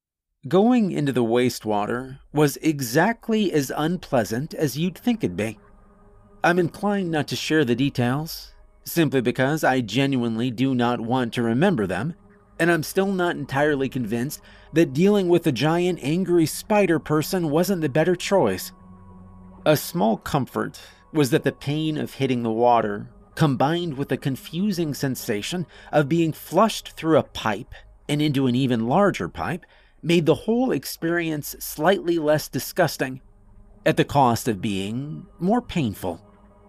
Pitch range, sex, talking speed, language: 115-155 Hz, male, 145 wpm, English